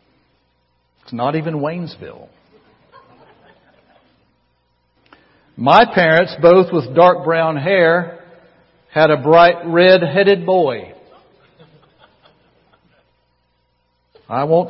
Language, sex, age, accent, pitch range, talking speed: English, male, 60-79, American, 120-165 Hz, 70 wpm